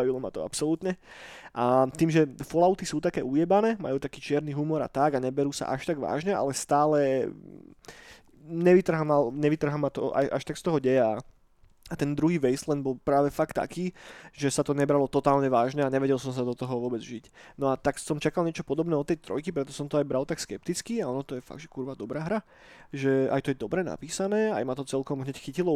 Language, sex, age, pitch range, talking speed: Slovak, male, 20-39, 135-160 Hz, 220 wpm